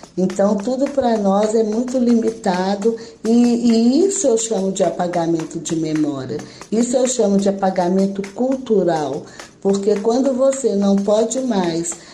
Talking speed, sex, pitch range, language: 140 wpm, female, 200-255 Hz, Portuguese